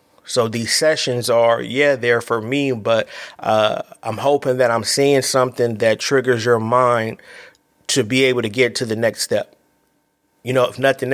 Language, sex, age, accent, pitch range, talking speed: English, male, 30-49, American, 110-125 Hz, 180 wpm